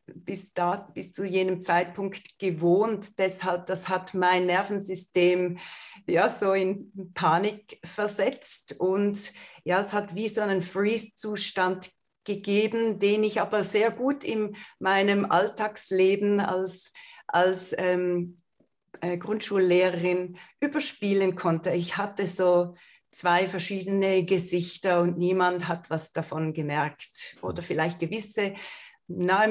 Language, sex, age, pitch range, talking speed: German, female, 40-59, 180-210 Hz, 115 wpm